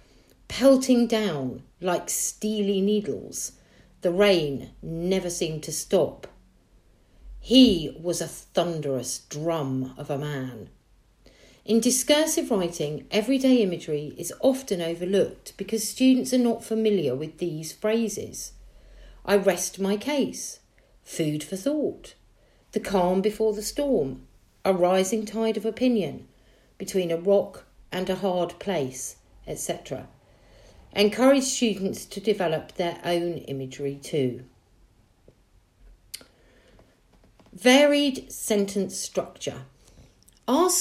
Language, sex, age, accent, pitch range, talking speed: English, female, 50-69, British, 155-215 Hz, 105 wpm